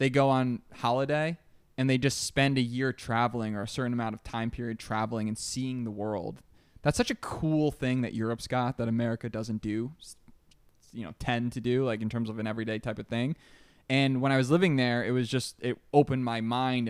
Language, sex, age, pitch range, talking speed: English, male, 20-39, 115-130 Hz, 220 wpm